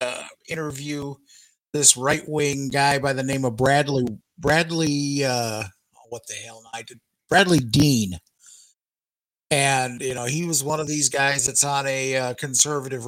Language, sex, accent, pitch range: English, male, American, 125-150 Hz